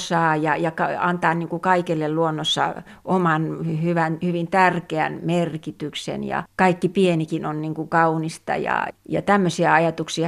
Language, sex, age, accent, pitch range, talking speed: Finnish, female, 30-49, native, 155-175 Hz, 125 wpm